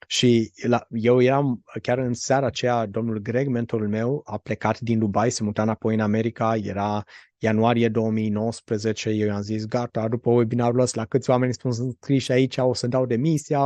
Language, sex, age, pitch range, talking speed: Romanian, male, 20-39, 110-125 Hz, 185 wpm